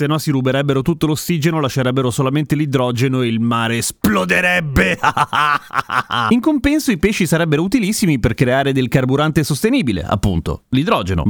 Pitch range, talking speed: 125-185 Hz, 140 wpm